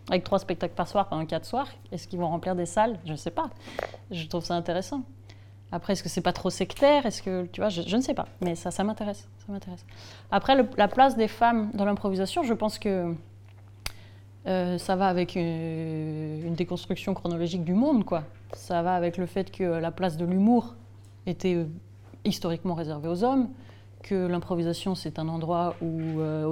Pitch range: 145-180 Hz